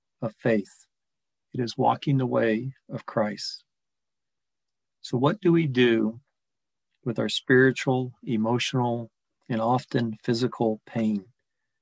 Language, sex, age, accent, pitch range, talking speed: English, male, 40-59, American, 115-130 Hz, 105 wpm